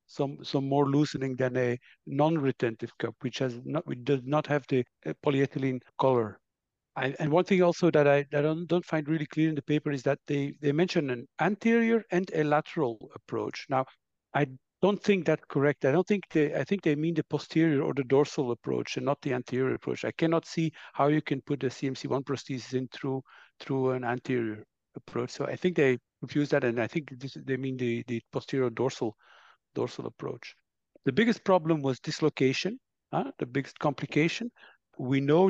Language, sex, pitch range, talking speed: English, male, 135-165 Hz, 200 wpm